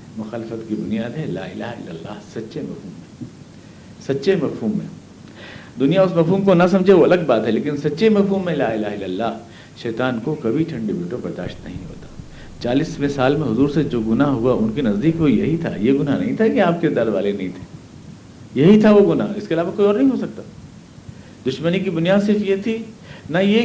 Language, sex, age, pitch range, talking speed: Urdu, male, 60-79, 130-185 Hz, 215 wpm